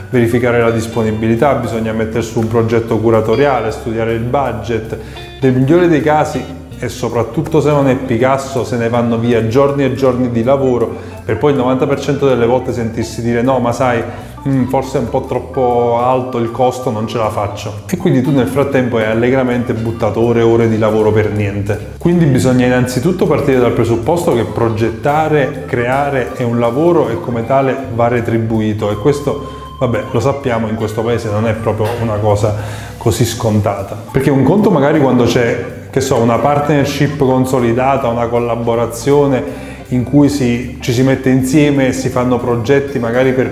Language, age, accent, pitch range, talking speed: Italian, 20-39, native, 115-130 Hz, 175 wpm